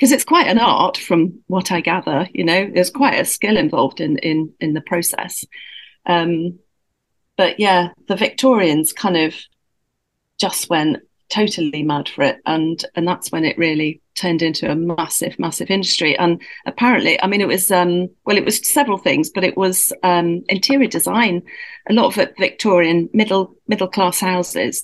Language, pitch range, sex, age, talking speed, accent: English, 165-215 Hz, female, 40-59, 170 wpm, British